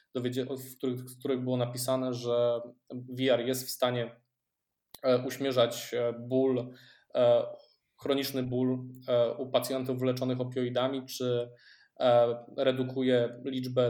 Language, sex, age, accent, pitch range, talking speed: Polish, male, 20-39, native, 125-140 Hz, 85 wpm